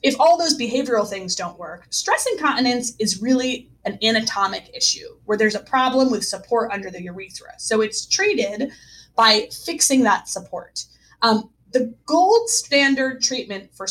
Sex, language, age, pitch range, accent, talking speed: female, English, 20-39, 200-270 Hz, American, 155 wpm